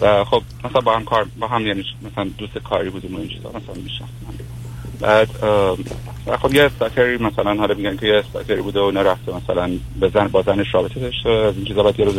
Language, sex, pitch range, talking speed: Persian, male, 95-120 Hz, 210 wpm